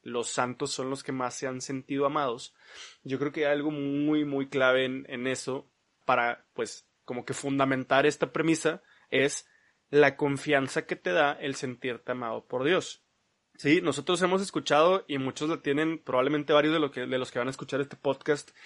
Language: Spanish